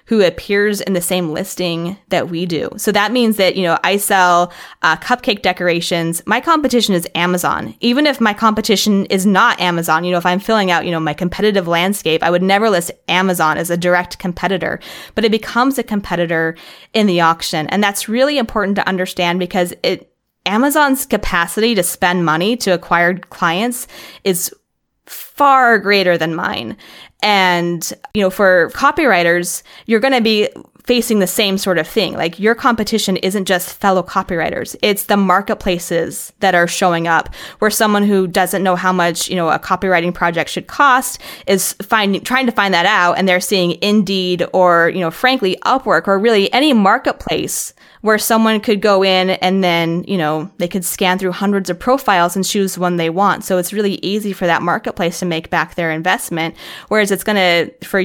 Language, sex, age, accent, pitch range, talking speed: English, female, 20-39, American, 175-210 Hz, 185 wpm